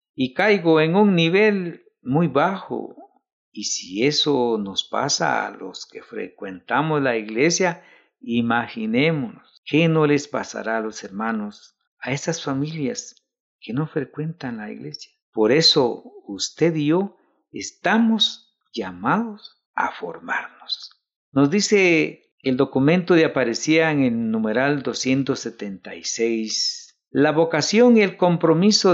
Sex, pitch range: male, 125-185 Hz